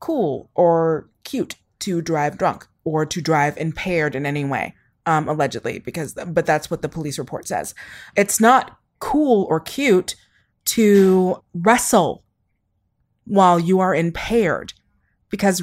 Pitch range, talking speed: 150-195 Hz, 135 wpm